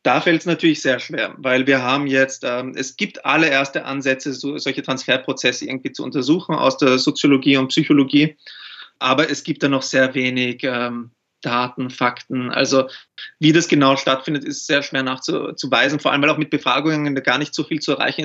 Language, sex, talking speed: German, male, 190 wpm